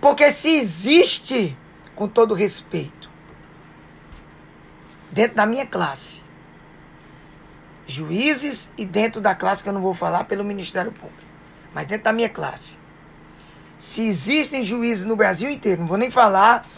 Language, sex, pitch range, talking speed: English, female, 195-260 Hz, 135 wpm